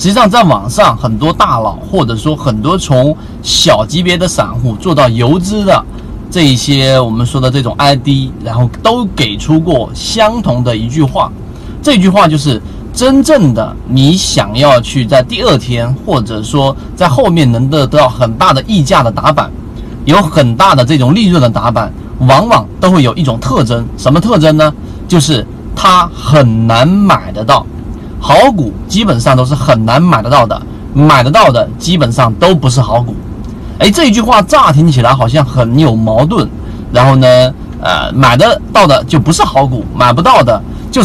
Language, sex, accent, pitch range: Chinese, male, native, 120-160 Hz